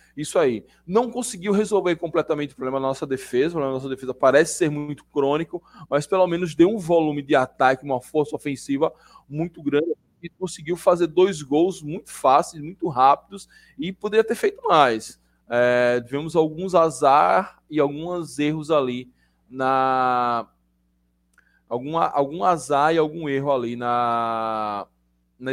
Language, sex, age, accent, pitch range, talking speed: Portuguese, male, 20-39, Brazilian, 125-155 Hz, 150 wpm